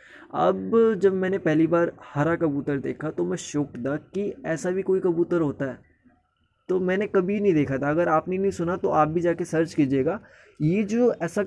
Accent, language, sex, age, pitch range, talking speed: native, Hindi, male, 20-39, 135-180 Hz, 200 wpm